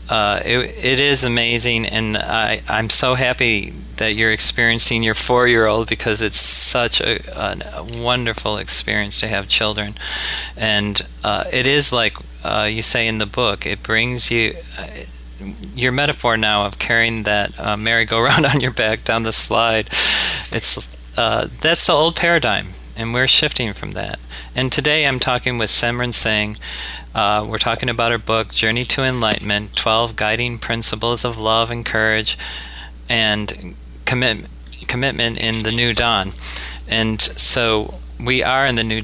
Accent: American